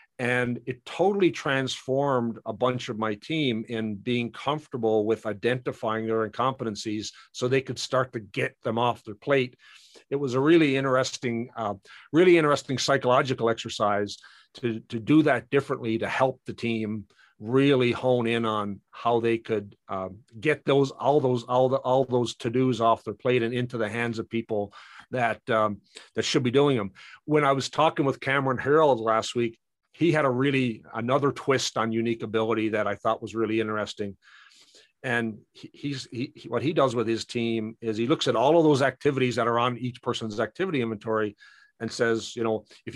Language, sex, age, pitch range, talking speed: English, male, 50-69, 110-135 Hz, 185 wpm